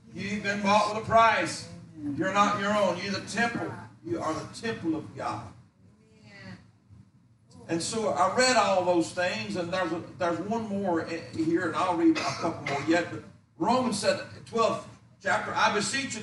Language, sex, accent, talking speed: English, male, American, 180 wpm